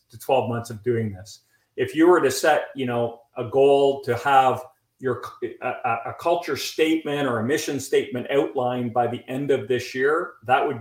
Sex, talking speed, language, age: male, 195 wpm, English, 40-59